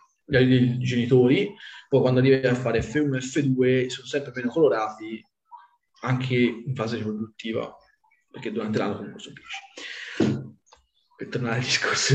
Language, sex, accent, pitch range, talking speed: Italian, male, native, 120-155 Hz, 140 wpm